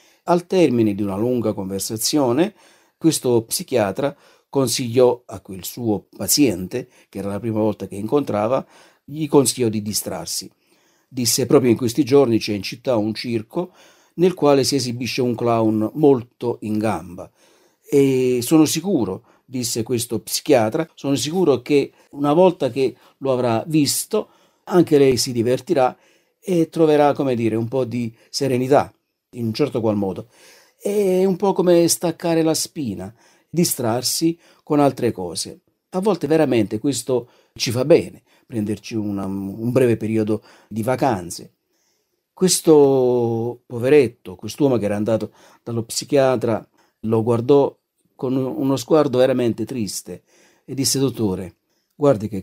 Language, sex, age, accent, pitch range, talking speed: Italian, male, 50-69, native, 110-145 Hz, 135 wpm